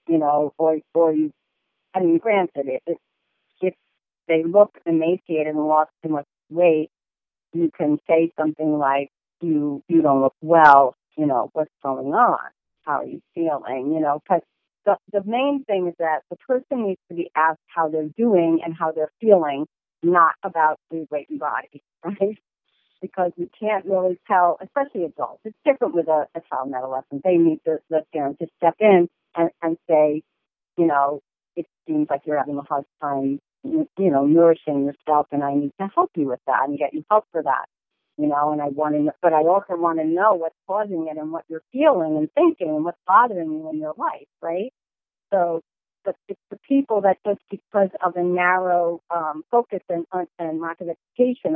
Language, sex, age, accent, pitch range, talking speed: English, female, 40-59, American, 155-195 Hz, 195 wpm